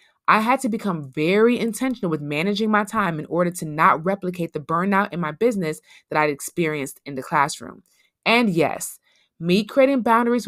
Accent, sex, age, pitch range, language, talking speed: American, female, 20-39, 170-230 Hz, English, 180 wpm